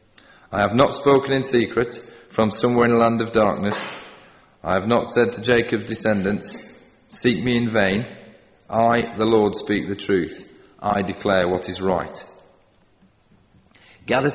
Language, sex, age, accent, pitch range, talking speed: English, male, 30-49, British, 100-120 Hz, 150 wpm